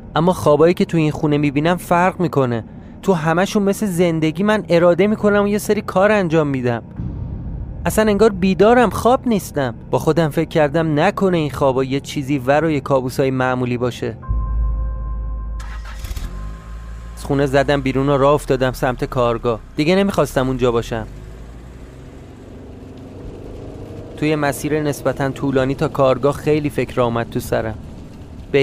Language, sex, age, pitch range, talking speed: Persian, male, 30-49, 120-160 Hz, 140 wpm